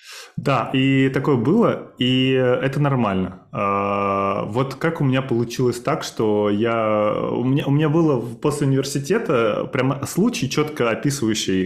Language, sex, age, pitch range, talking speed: Russian, male, 20-39, 110-145 Hz, 125 wpm